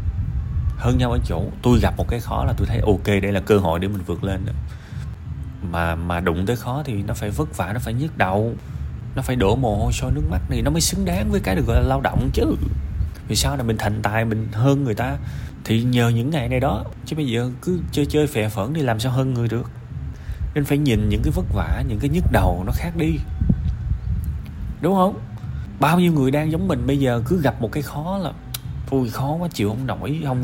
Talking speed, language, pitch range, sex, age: 245 wpm, Vietnamese, 95-125 Hz, male, 20-39